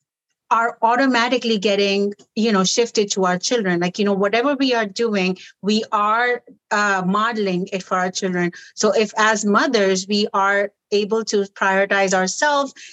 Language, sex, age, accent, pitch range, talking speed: English, female, 50-69, Indian, 205-265 Hz, 160 wpm